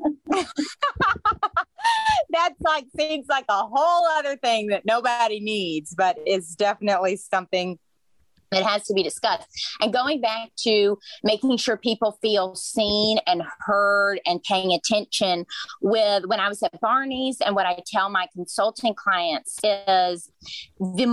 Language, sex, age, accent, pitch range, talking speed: English, female, 30-49, American, 190-265 Hz, 140 wpm